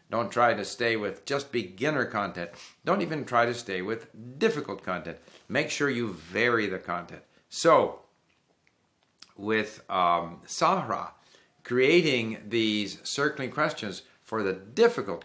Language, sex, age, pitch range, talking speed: English, male, 60-79, 100-140 Hz, 130 wpm